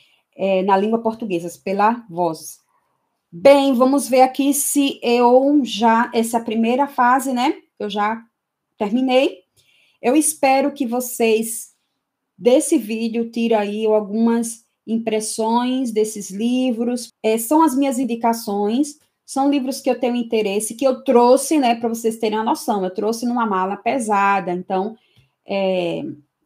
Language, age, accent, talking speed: Portuguese, 20-39, Brazilian, 140 wpm